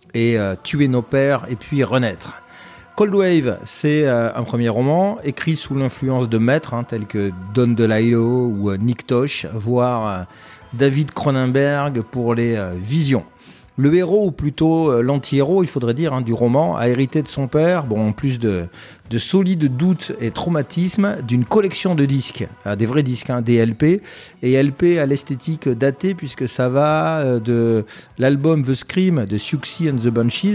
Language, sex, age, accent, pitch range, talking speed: French, male, 40-59, French, 120-155 Hz, 175 wpm